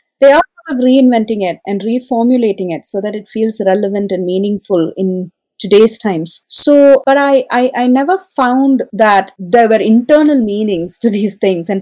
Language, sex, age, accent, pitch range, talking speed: English, female, 30-49, Indian, 195-270 Hz, 170 wpm